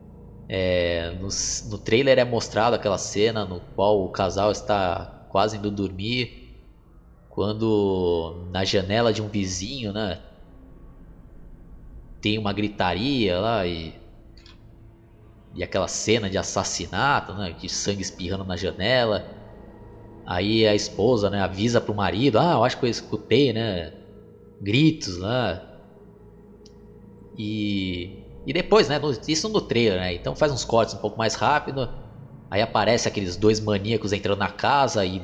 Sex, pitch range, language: male, 95-120 Hz, Portuguese